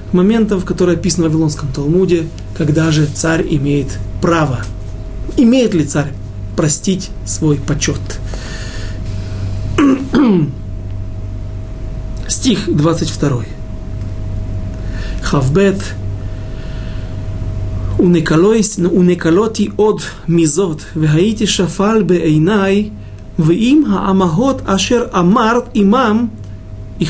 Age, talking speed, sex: 40-59, 75 wpm, male